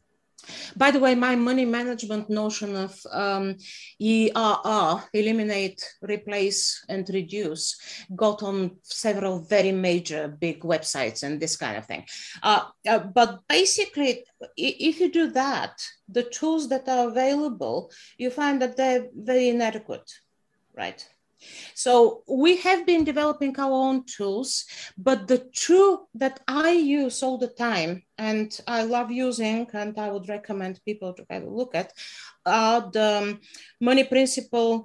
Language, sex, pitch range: English, female, 210-265 Hz